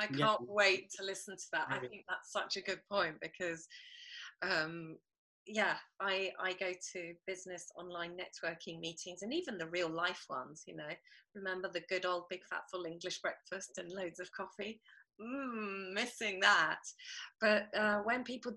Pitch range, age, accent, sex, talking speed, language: 185-245 Hz, 30-49, British, female, 170 wpm, English